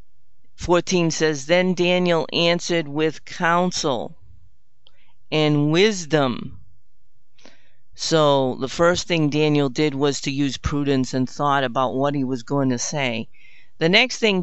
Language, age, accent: English, 50-69, American